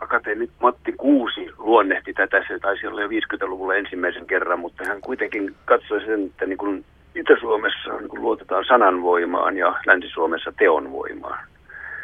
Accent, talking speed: native, 130 wpm